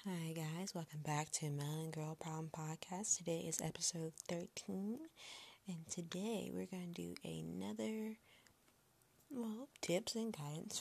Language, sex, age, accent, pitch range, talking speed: English, female, 20-39, American, 155-205 Hz, 135 wpm